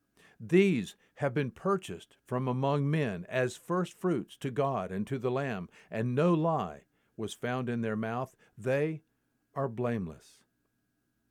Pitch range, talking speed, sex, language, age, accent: 120-165 Hz, 140 wpm, male, English, 50-69, American